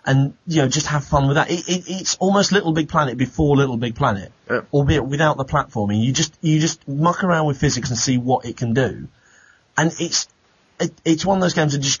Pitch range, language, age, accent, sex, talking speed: 120-150 Hz, English, 30-49, British, male, 235 wpm